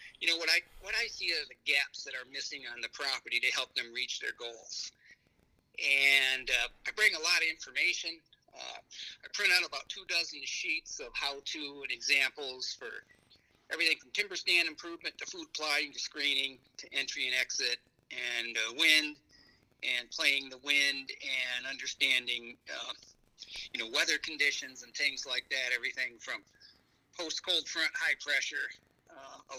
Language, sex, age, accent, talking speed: English, male, 50-69, American, 165 wpm